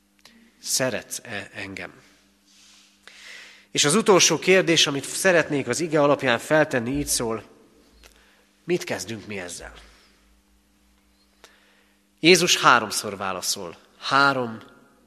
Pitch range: 100-155 Hz